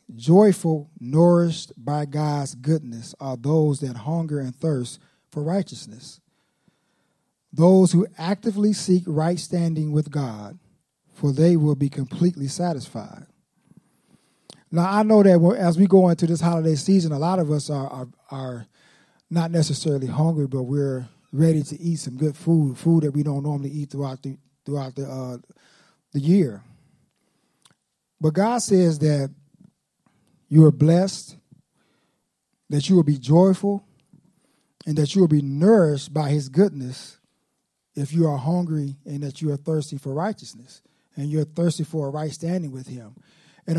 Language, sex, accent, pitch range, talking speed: English, male, American, 145-180 Hz, 150 wpm